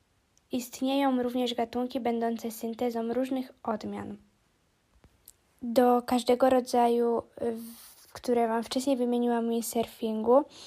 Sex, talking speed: female, 85 wpm